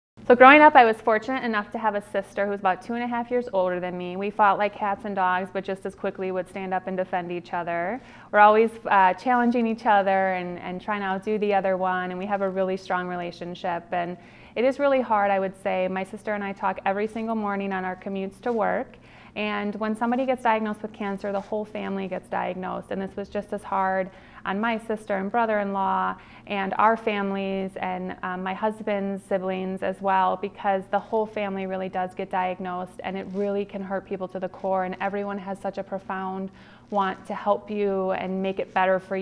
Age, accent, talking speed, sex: 30-49, American, 225 wpm, female